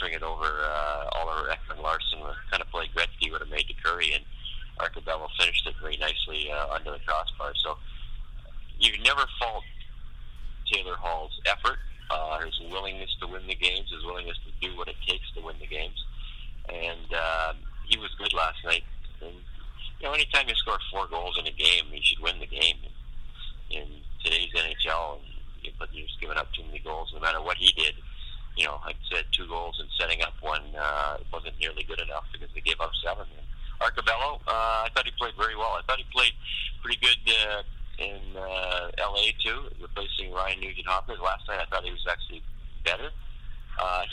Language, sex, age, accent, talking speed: English, male, 30-49, American, 190 wpm